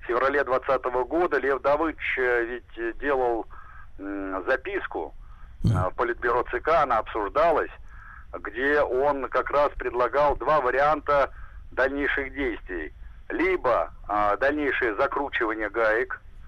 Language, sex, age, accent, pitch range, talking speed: Russian, male, 60-79, native, 105-165 Hz, 95 wpm